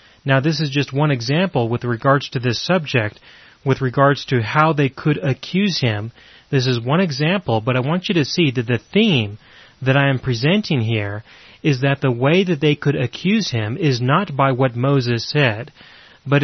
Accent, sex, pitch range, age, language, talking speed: American, male, 125-145 Hz, 30-49, English, 195 wpm